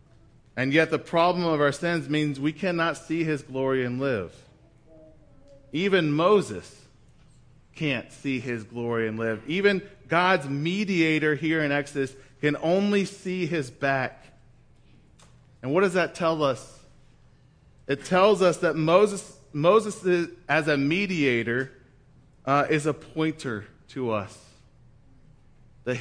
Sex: male